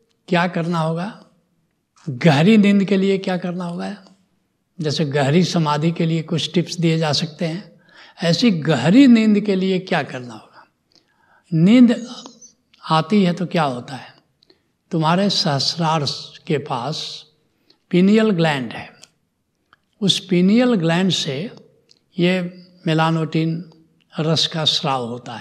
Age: 60-79